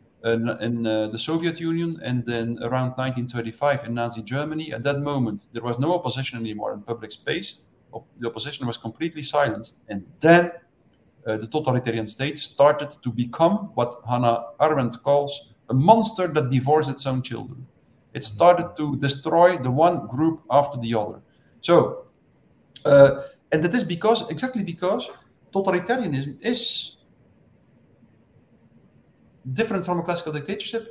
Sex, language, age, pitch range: male, English, 50-69, 130-215 Hz